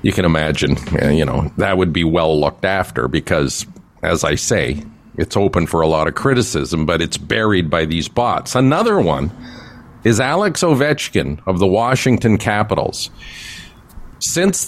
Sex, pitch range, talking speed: male, 95-125 Hz, 155 wpm